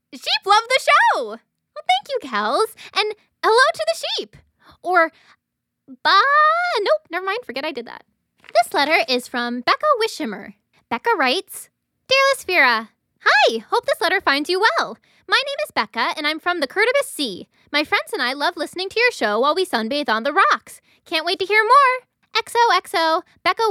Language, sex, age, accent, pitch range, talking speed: English, female, 10-29, American, 270-415 Hz, 180 wpm